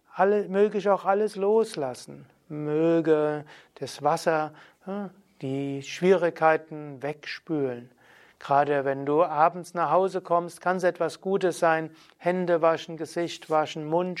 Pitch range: 145-175 Hz